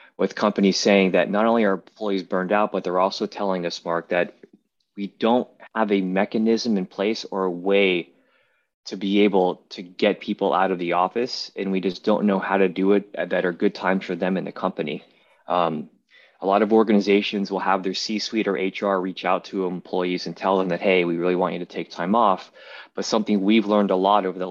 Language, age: English, 20-39